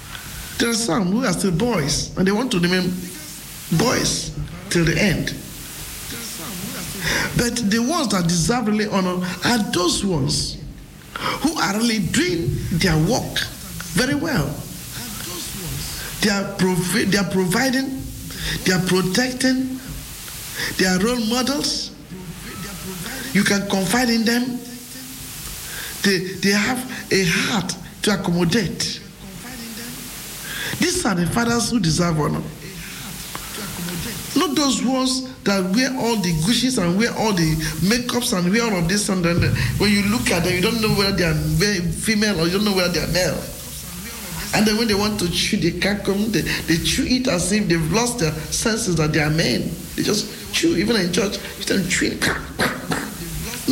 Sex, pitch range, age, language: male, 175-235 Hz, 50-69, English